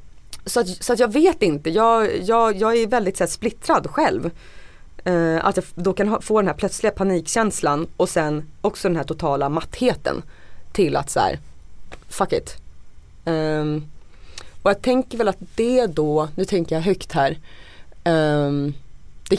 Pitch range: 150-250 Hz